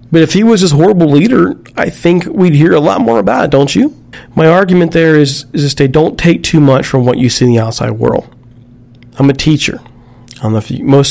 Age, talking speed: 40-59, 220 wpm